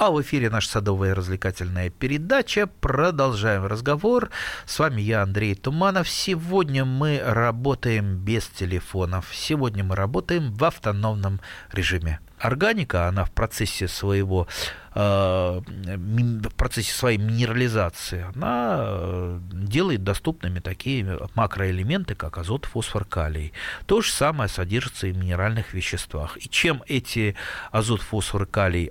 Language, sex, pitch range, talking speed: Russian, male, 95-125 Hz, 110 wpm